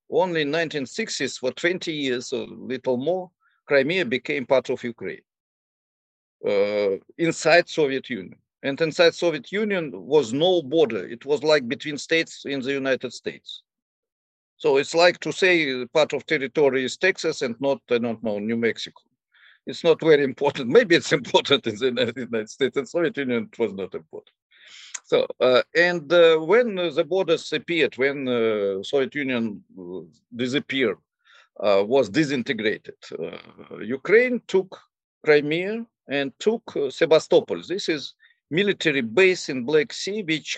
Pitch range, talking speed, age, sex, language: 130-195 Hz, 150 wpm, 50-69, male, English